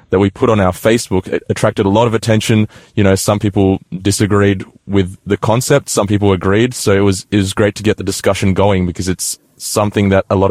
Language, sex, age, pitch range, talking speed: English, male, 20-39, 95-110 Hz, 225 wpm